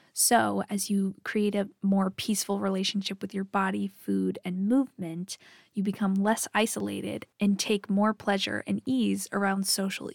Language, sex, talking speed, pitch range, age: English, female, 155 wpm, 185-210 Hz, 10-29